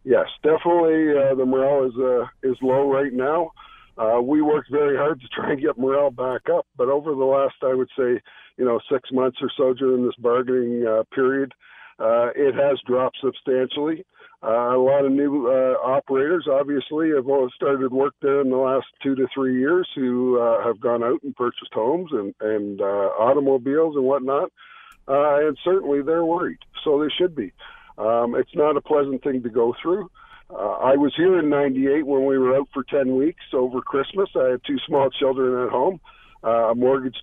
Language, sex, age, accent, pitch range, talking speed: English, male, 50-69, American, 130-155 Hz, 195 wpm